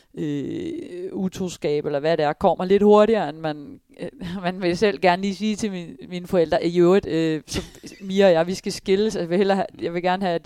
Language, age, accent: Danish, 30-49, native